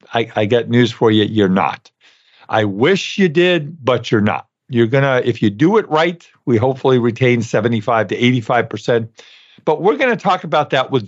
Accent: American